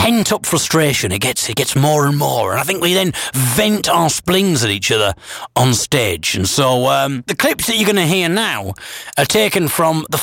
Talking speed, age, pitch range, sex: 215 wpm, 40-59, 130-175 Hz, male